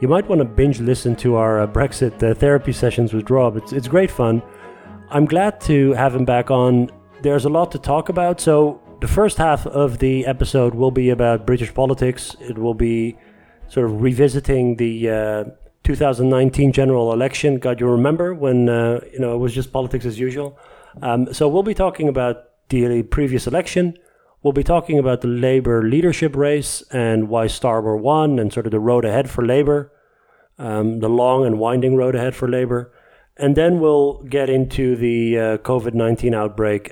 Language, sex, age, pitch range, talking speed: Dutch, male, 30-49, 115-140 Hz, 190 wpm